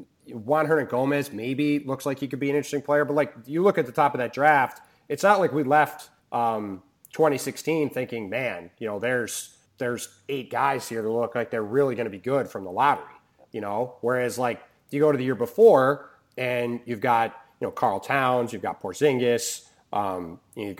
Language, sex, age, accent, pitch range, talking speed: English, male, 30-49, American, 115-145 Hz, 210 wpm